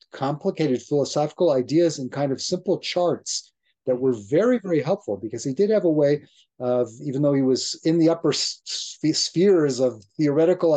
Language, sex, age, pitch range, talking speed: English, male, 40-59, 125-150 Hz, 165 wpm